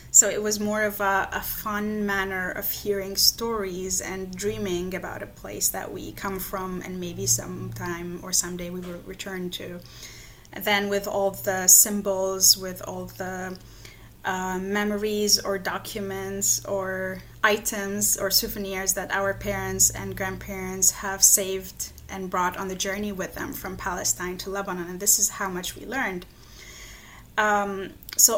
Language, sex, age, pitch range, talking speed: English, female, 20-39, 185-210 Hz, 150 wpm